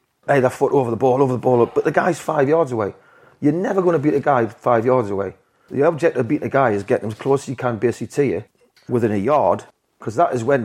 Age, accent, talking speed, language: 30-49, British, 275 wpm, English